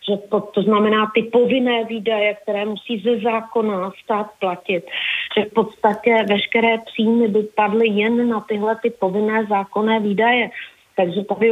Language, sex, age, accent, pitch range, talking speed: Czech, female, 40-59, native, 200-225 Hz, 150 wpm